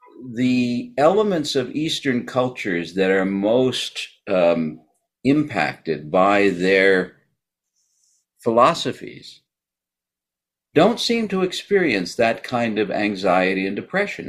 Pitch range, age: 95-145 Hz, 50-69